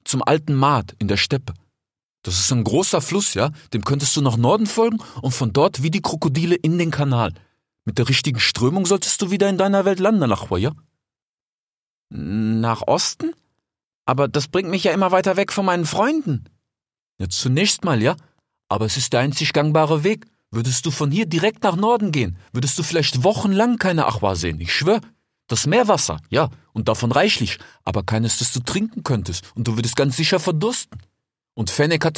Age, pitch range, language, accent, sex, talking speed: 40-59, 115-180 Hz, German, German, male, 190 wpm